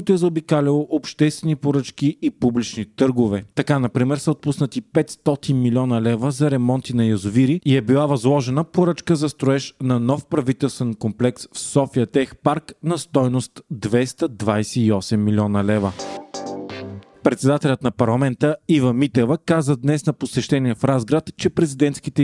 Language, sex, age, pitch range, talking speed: Bulgarian, male, 40-59, 120-145 Hz, 140 wpm